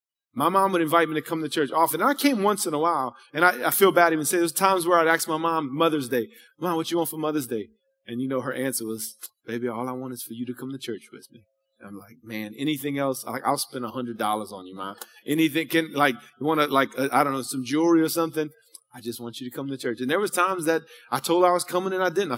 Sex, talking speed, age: male, 290 wpm, 30-49